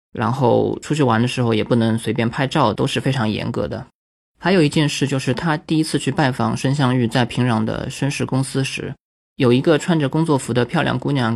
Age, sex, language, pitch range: 20-39, male, Chinese, 120-145 Hz